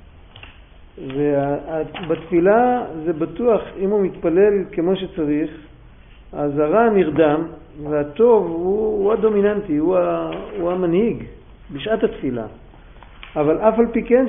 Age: 50-69